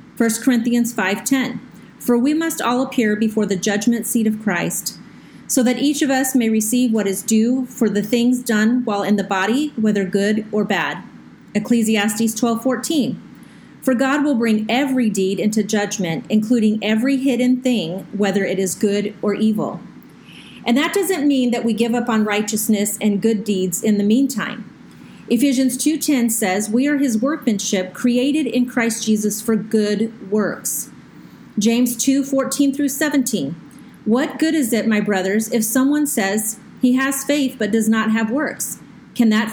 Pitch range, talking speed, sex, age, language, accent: 215-260 Hz, 165 wpm, female, 30-49, English, American